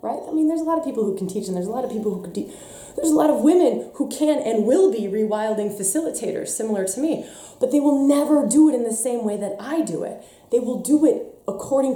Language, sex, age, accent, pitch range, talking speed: English, female, 20-39, American, 195-300 Hz, 265 wpm